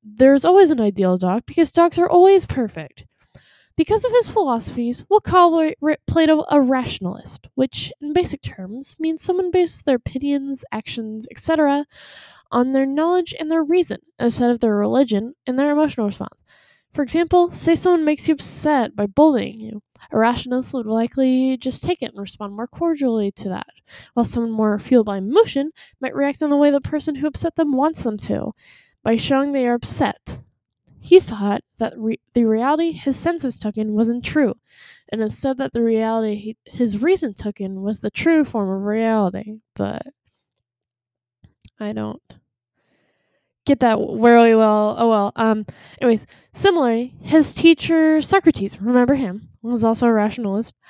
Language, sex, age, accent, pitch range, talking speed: English, female, 10-29, American, 220-305 Hz, 165 wpm